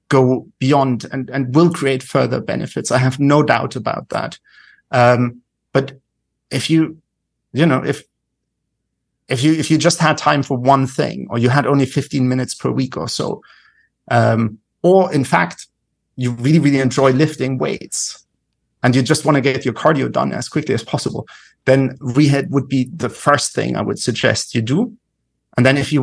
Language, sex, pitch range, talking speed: English, male, 125-145 Hz, 185 wpm